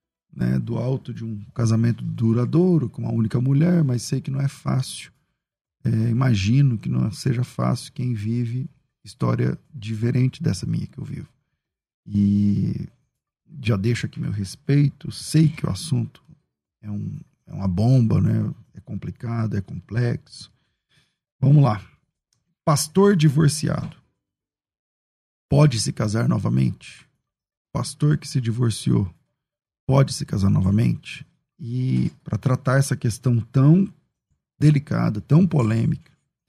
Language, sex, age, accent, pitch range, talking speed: Portuguese, male, 40-59, Brazilian, 110-145 Hz, 125 wpm